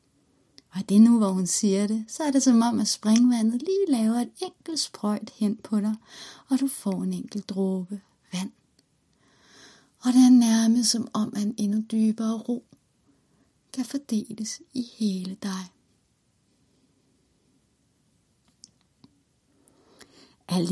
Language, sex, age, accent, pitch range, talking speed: Danish, female, 30-49, native, 190-230 Hz, 135 wpm